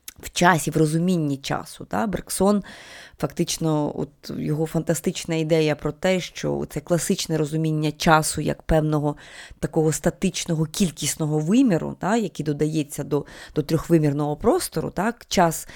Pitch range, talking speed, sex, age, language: 150-185 Hz, 130 wpm, female, 20-39, Ukrainian